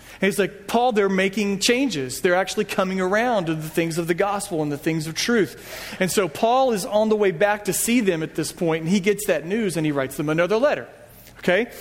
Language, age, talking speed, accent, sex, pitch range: English, 40-59, 240 wpm, American, male, 165-210 Hz